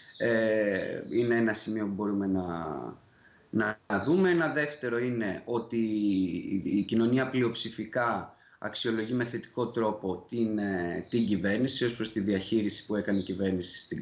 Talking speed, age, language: 135 wpm, 30-49, Greek